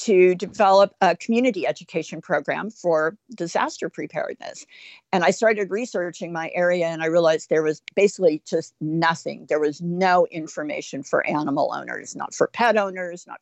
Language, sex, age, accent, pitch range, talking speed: English, female, 50-69, American, 165-210 Hz, 155 wpm